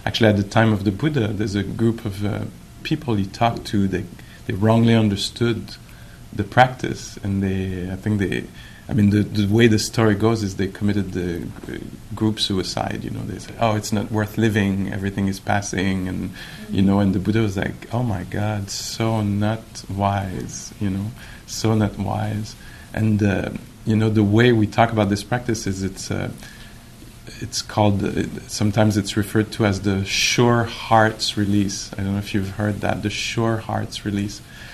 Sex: male